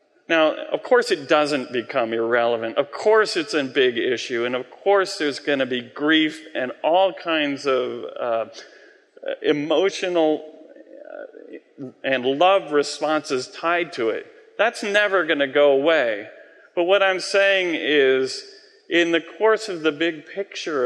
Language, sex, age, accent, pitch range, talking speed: English, male, 40-59, American, 140-205 Hz, 145 wpm